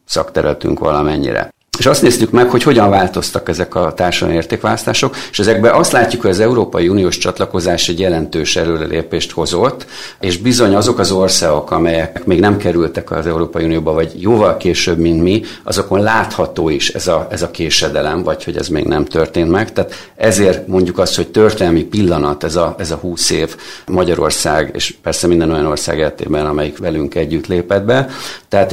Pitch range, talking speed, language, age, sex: 85-100 Hz, 175 wpm, Hungarian, 50-69, male